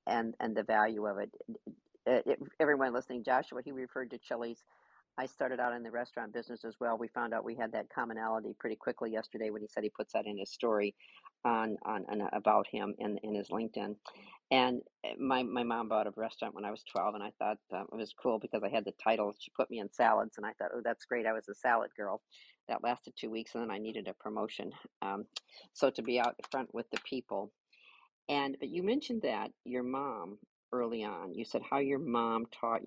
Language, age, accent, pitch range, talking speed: English, 50-69, American, 110-130 Hz, 225 wpm